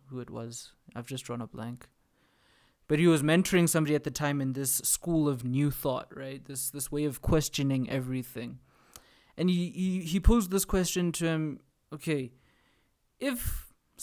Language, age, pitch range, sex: English, 20-39, 135-165 Hz, male